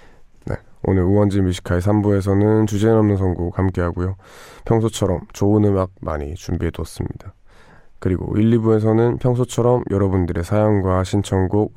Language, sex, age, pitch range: Korean, male, 20-39, 90-105 Hz